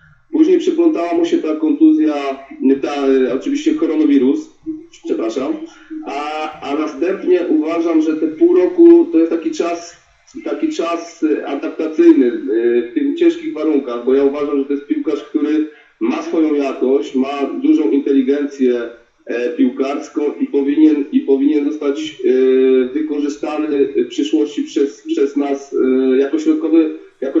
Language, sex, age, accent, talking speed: Polish, male, 40-59, native, 125 wpm